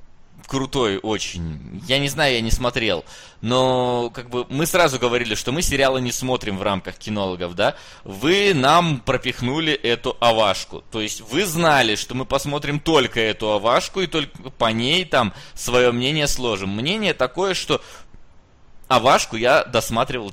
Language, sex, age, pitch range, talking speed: Russian, male, 20-39, 115-145 Hz, 155 wpm